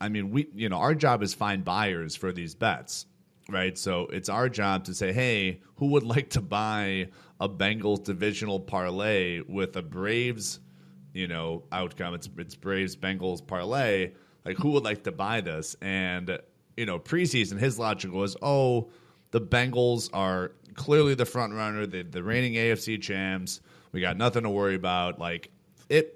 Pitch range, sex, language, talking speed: 95-120 Hz, male, English, 175 wpm